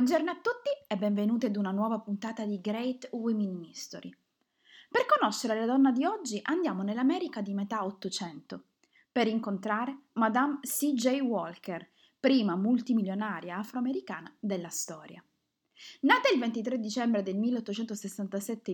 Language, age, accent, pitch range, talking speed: Italian, 20-39, native, 200-265 Hz, 130 wpm